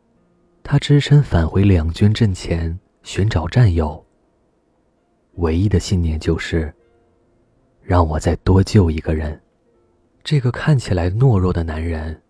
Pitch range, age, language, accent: 85-115 Hz, 20-39, Chinese, native